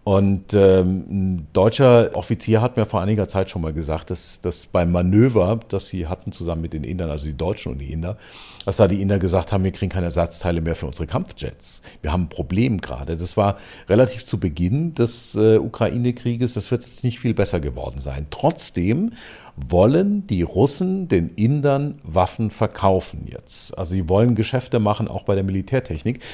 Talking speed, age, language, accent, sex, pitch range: 190 wpm, 50-69, German, German, male, 90-120 Hz